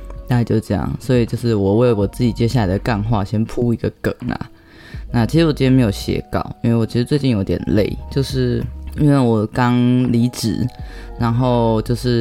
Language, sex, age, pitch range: Chinese, female, 20-39, 110-125 Hz